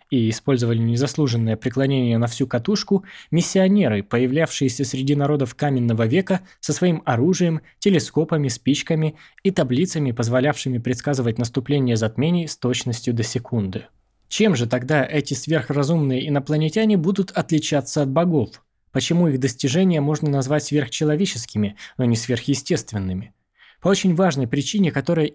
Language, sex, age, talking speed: Russian, male, 20-39, 125 wpm